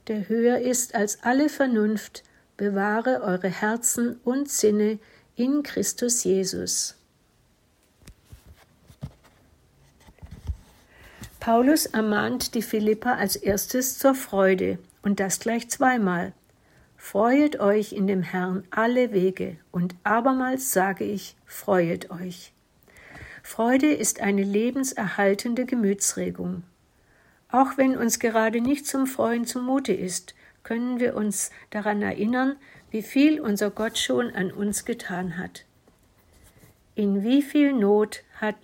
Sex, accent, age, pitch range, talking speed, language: female, German, 60-79, 195-250 Hz, 110 wpm, German